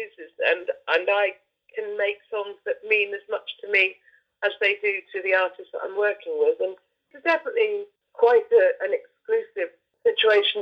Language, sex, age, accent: English, female, 40-59, British